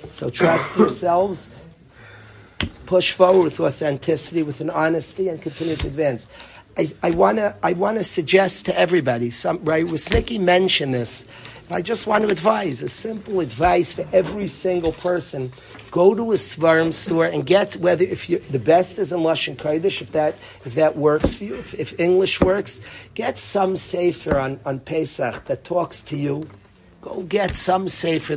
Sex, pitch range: male, 145-185 Hz